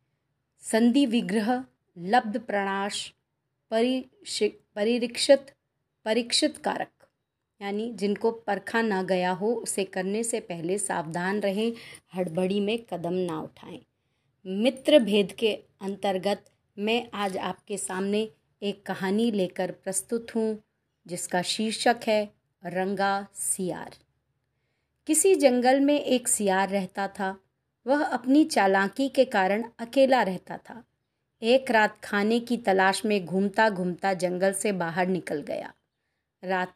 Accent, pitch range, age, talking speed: native, 185-230 Hz, 30-49, 120 wpm